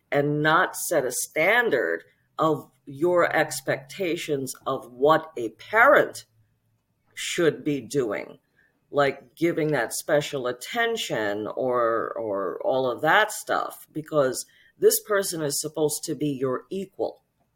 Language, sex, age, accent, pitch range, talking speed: English, female, 40-59, American, 125-155 Hz, 120 wpm